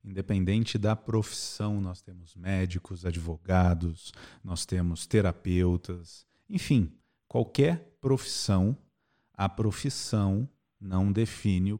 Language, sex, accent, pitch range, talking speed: Portuguese, male, Brazilian, 95-125 Hz, 90 wpm